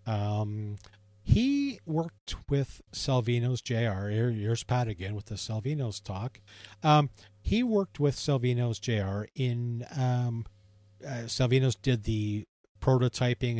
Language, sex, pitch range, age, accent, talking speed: English, male, 105-130 Hz, 40-59, American, 115 wpm